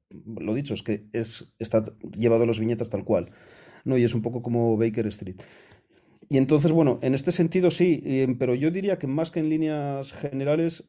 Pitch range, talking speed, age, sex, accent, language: 105-125 Hz, 200 wpm, 30-49, male, Spanish, Spanish